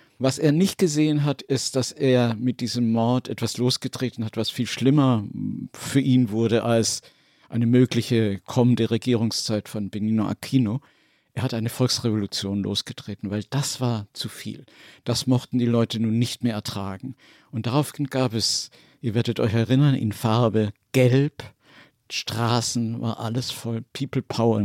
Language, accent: German, German